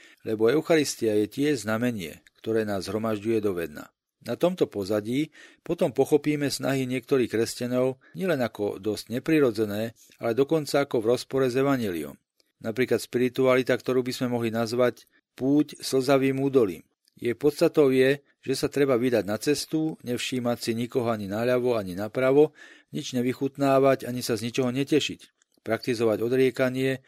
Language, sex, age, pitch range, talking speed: Slovak, male, 40-59, 115-140 Hz, 140 wpm